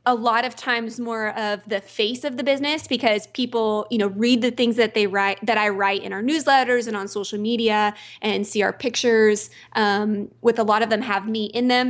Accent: American